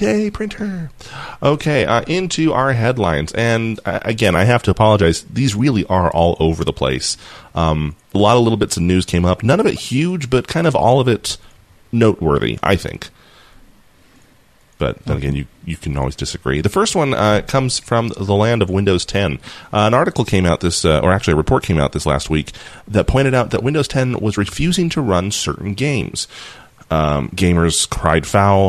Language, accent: English, American